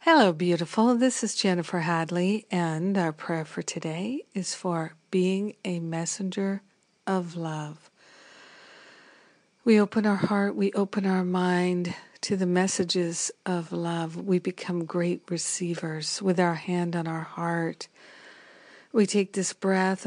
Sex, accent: female, American